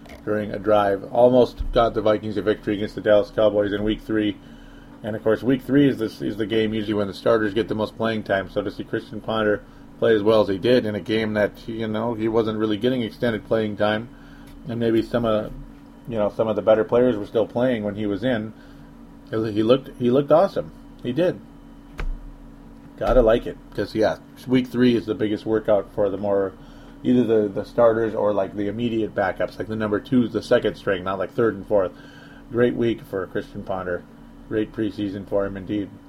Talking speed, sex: 215 wpm, male